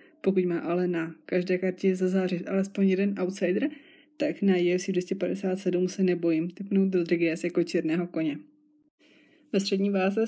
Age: 20-39